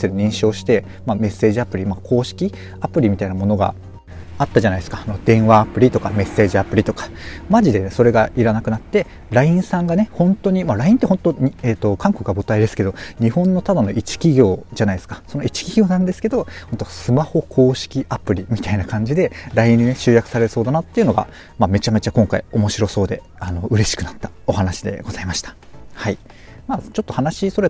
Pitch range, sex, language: 100-135 Hz, male, Japanese